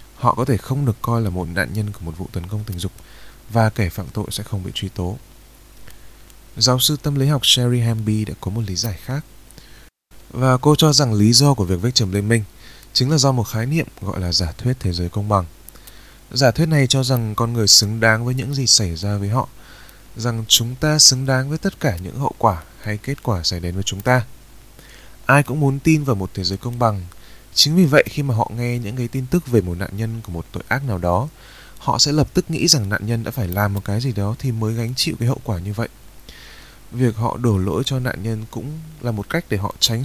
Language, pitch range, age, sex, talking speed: Vietnamese, 100-130 Hz, 20-39, male, 255 wpm